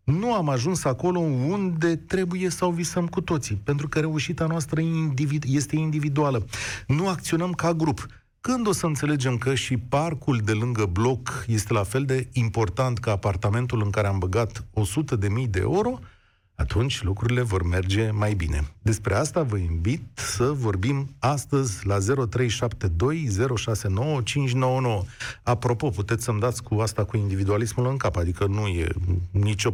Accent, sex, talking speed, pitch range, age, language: native, male, 145 wpm, 105-160 Hz, 40-59, Romanian